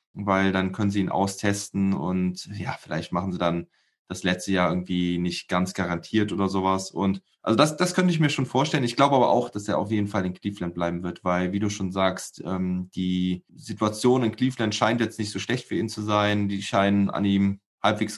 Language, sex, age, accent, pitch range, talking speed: German, male, 20-39, German, 95-115 Hz, 220 wpm